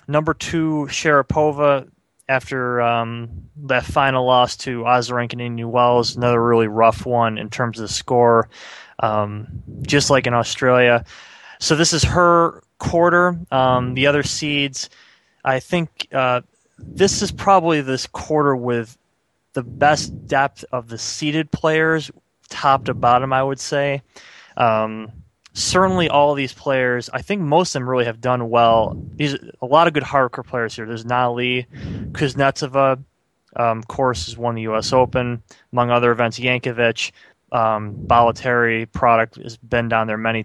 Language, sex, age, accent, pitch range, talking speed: English, male, 20-39, American, 115-140 Hz, 155 wpm